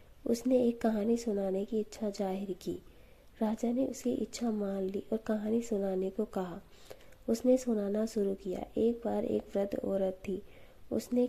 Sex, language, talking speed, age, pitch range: female, Hindi, 160 wpm, 20-39, 195-230 Hz